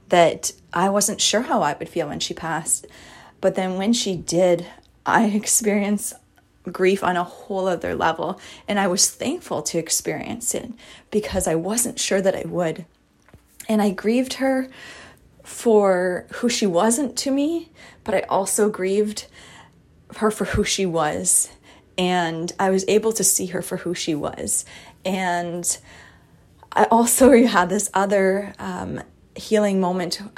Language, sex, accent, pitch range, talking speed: English, female, American, 170-210 Hz, 150 wpm